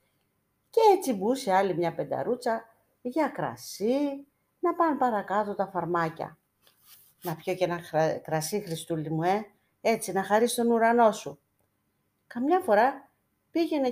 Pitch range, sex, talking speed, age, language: 150-230 Hz, female, 135 wpm, 40-59, Greek